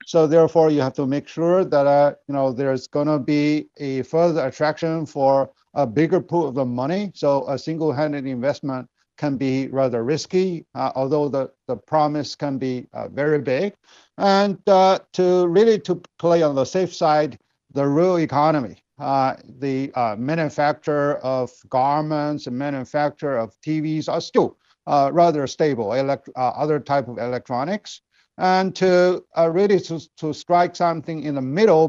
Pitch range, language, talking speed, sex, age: 135-165 Hz, English, 165 wpm, male, 50-69